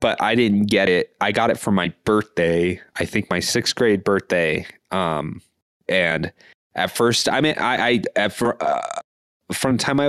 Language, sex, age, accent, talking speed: English, male, 20-39, American, 190 wpm